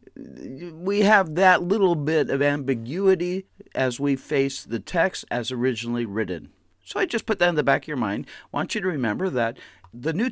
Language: English